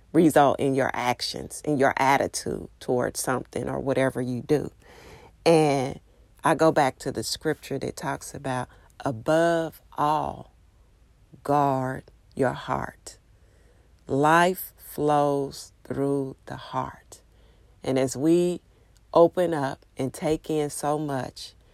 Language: English